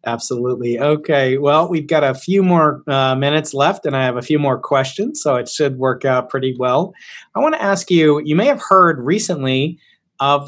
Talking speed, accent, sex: 205 wpm, American, male